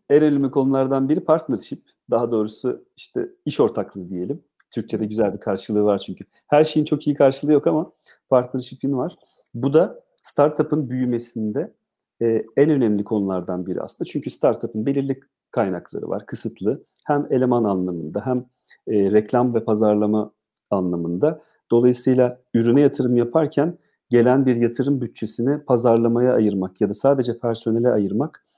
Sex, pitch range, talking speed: male, 105-140 Hz, 135 wpm